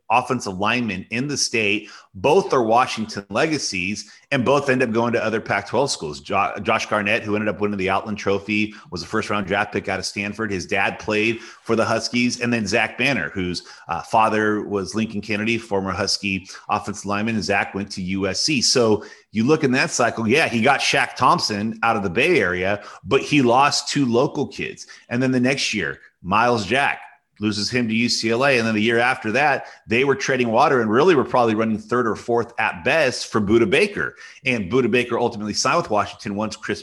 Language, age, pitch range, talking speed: English, 30-49, 100-125 Hz, 205 wpm